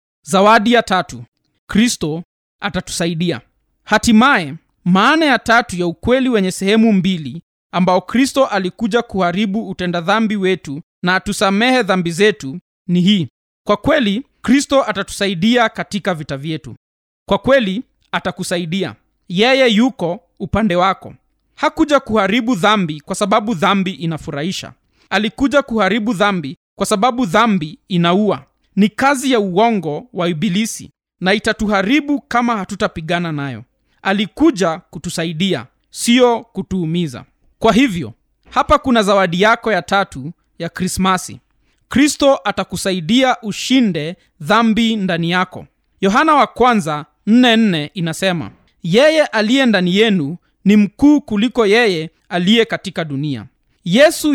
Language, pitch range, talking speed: Swahili, 175-230 Hz, 115 wpm